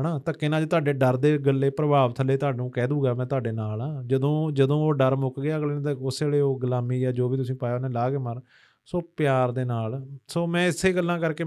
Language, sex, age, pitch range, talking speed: Punjabi, male, 30-49, 120-145 Hz, 245 wpm